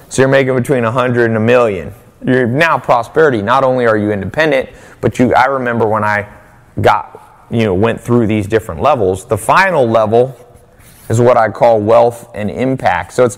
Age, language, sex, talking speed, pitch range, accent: 30-49, English, male, 195 wpm, 105-125 Hz, American